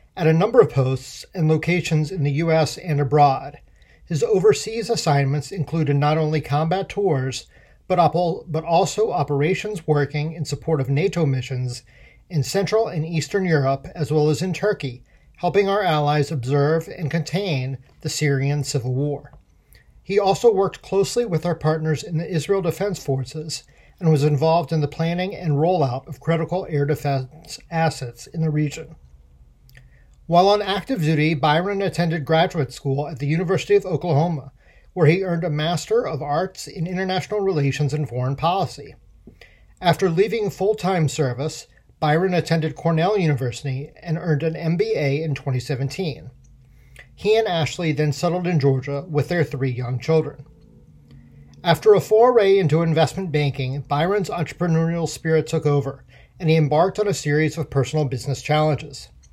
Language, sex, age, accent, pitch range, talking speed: English, male, 40-59, American, 145-175 Hz, 150 wpm